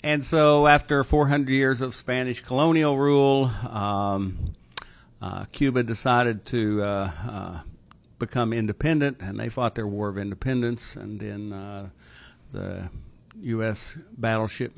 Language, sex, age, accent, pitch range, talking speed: English, male, 60-79, American, 100-125 Hz, 125 wpm